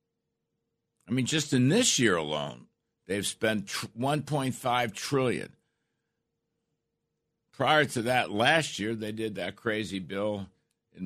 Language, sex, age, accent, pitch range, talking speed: English, male, 60-79, American, 95-125 Hz, 120 wpm